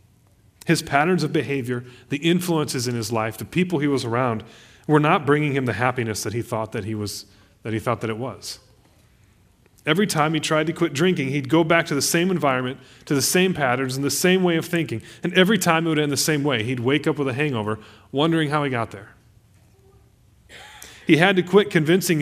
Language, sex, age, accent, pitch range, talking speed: English, male, 30-49, American, 115-160 Hz, 220 wpm